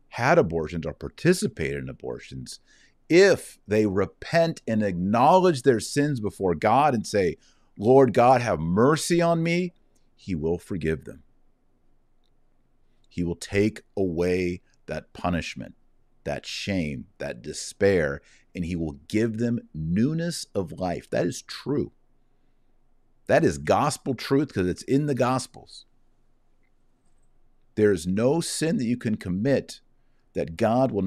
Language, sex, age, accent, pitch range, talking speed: English, male, 50-69, American, 95-135 Hz, 130 wpm